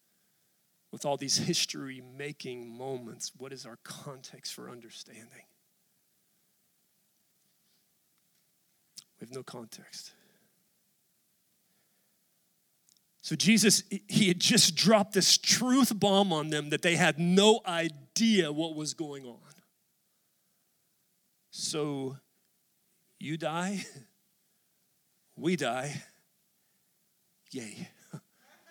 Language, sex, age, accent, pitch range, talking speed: English, male, 40-59, American, 165-205 Hz, 85 wpm